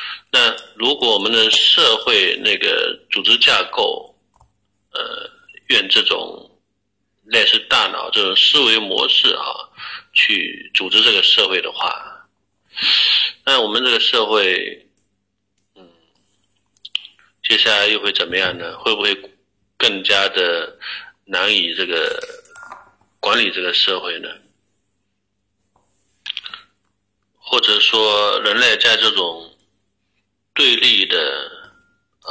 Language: Chinese